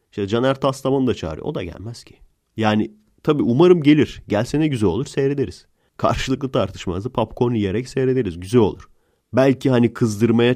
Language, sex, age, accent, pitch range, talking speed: English, male, 30-49, Turkish, 95-130 Hz, 155 wpm